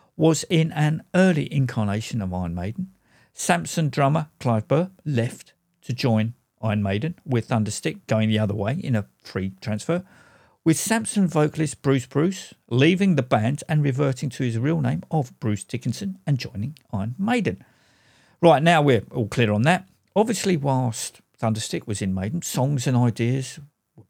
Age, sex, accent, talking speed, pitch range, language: 50-69, male, British, 160 wpm, 115-175 Hz, English